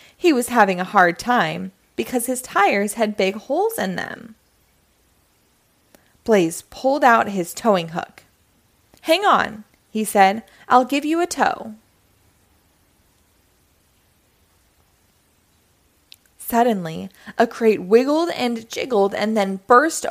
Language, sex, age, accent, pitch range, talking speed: English, female, 20-39, American, 190-285 Hz, 115 wpm